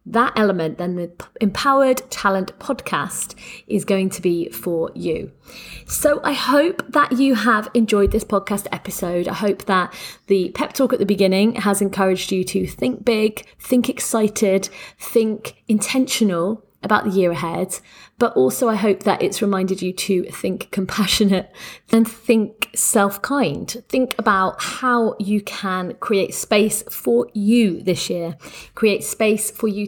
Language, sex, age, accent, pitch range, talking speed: English, female, 30-49, British, 190-235 Hz, 150 wpm